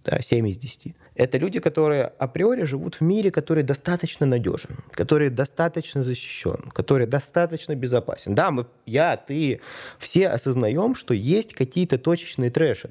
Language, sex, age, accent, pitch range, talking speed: Russian, male, 20-39, native, 110-150 Hz, 145 wpm